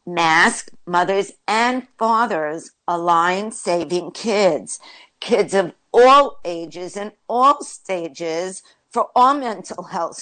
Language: English